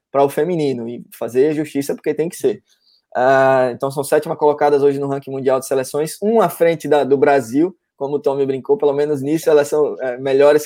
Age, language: 20-39, Portuguese